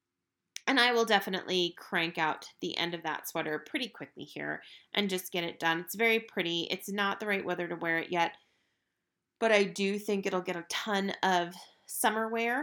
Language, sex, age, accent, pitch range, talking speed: English, female, 30-49, American, 175-235 Hz, 200 wpm